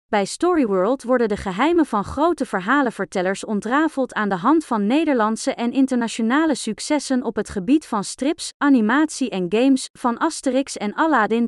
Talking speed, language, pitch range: 150 wpm, Dutch, 215-290 Hz